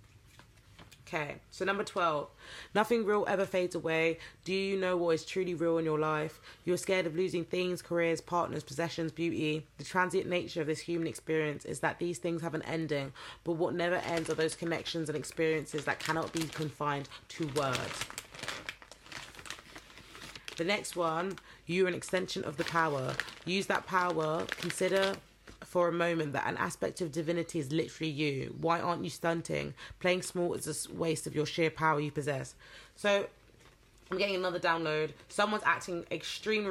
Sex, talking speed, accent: female, 170 wpm, British